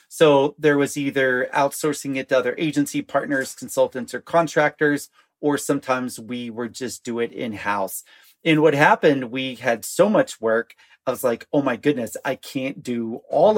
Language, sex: English, male